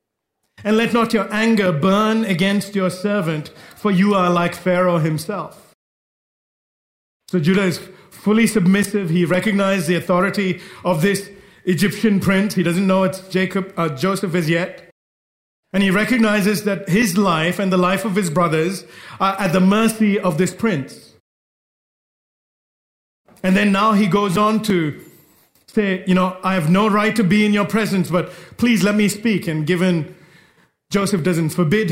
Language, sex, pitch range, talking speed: English, male, 170-210 Hz, 160 wpm